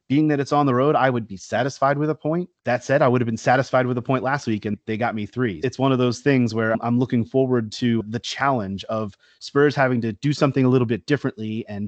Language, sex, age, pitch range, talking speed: English, male, 30-49, 110-135 Hz, 270 wpm